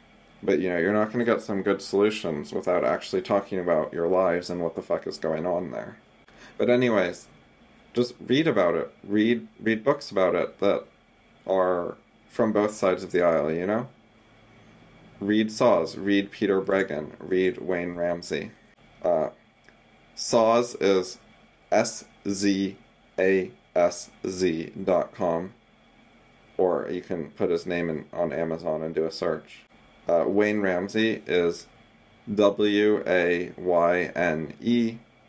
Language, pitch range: English, 90-110 Hz